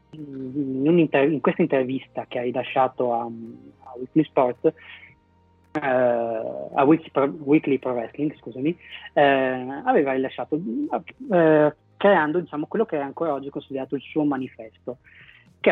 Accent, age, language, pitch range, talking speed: native, 30-49, Italian, 125-145 Hz, 145 wpm